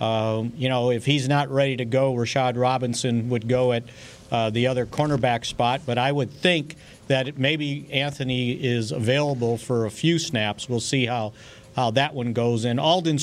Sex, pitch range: male, 120-140 Hz